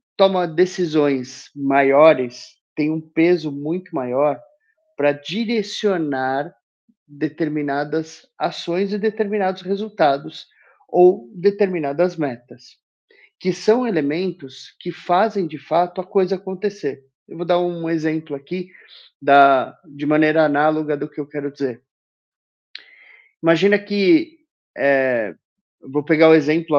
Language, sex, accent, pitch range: Portuguese, male, Brazilian, 150-200 Hz